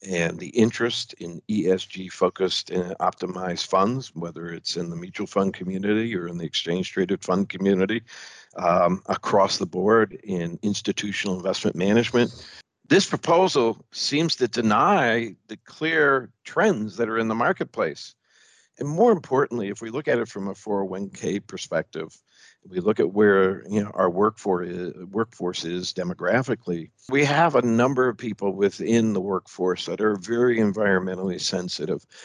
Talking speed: 150 wpm